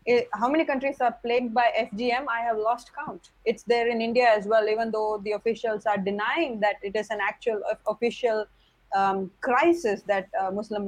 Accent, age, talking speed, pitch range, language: Indian, 20-39, 190 wpm, 200-260 Hz, English